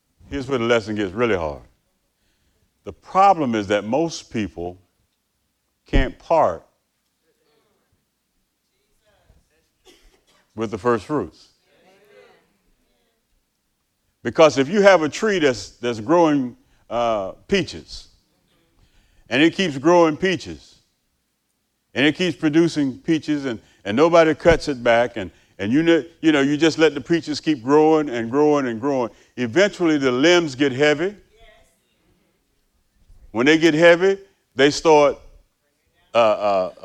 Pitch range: 120-165 Hz